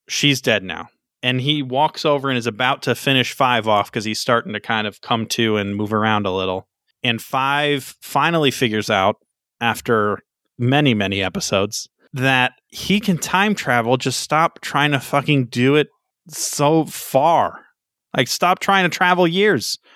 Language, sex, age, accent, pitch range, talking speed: English, male, 20-39, American, 115-140 Hz, 170 wpm